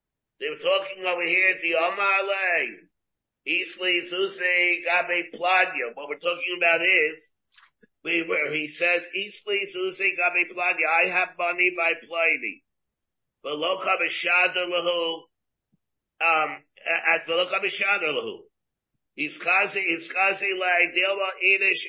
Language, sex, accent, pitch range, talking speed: English, male, American, 170-200 Hz, 100 wpm